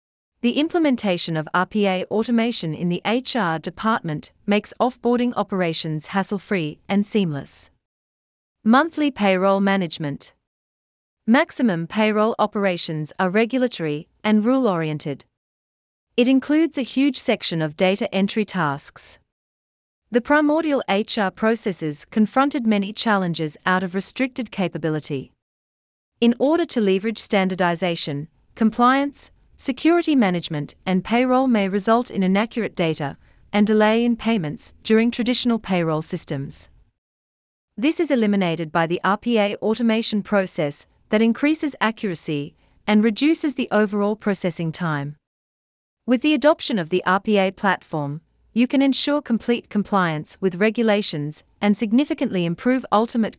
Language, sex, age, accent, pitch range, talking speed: English, female, 40-59, Australian, 160-235 Hz, 120 wpm